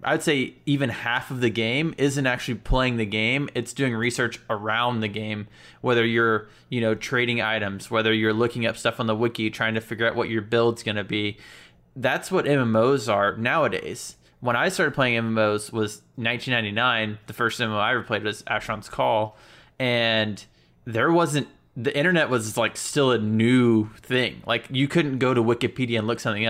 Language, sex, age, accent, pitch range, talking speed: English, male, 20-39, American, 110-130 Hz, 185 wpm